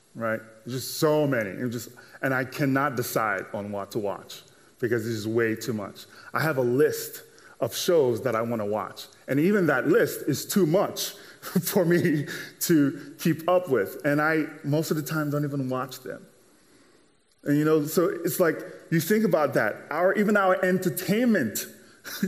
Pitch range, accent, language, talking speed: 120-165 Hz, American, English, 185 wpm